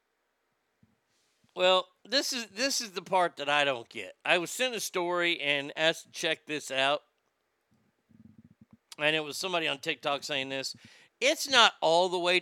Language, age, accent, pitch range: English, 50-69, American, 170-230 Hz